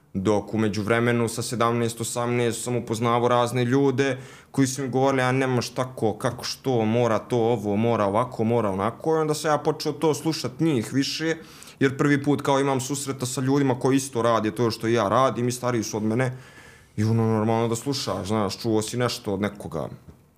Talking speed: 190 wpm